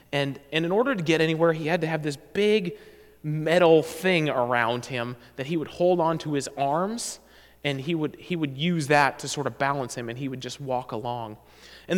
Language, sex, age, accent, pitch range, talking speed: English, male, 30-49, American, 135-195 Hz, 215 wpm